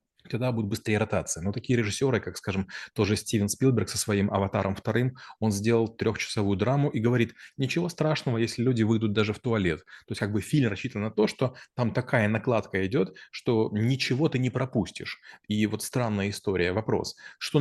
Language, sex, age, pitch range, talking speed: Russian, male, 30-49, 105-125 Hz, 185 wpm